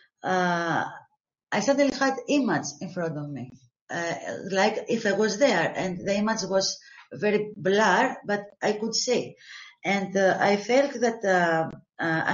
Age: 30-49